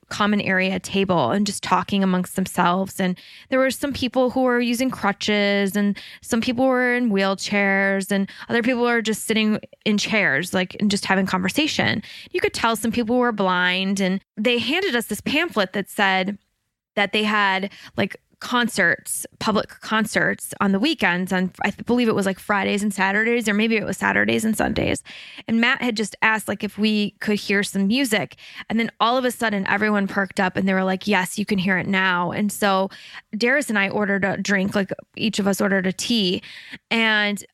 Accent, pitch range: American, 195-235 Hz